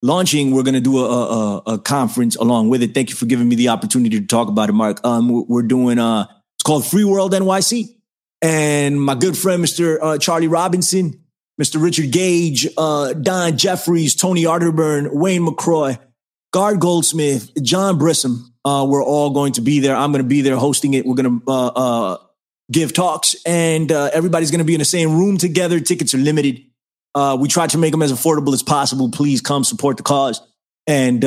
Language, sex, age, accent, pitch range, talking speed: English, male, 30-49, American, 125-160 Hz, 205 wpm